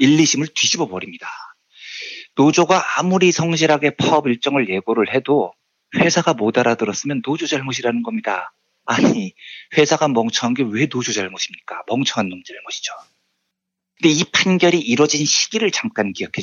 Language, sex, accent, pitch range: Korean, male, native, 110-165 Hz